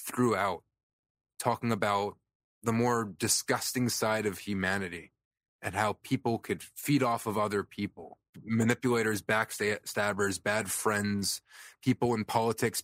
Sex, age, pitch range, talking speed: male, 20-39, 100-120 Hz, 115 wpm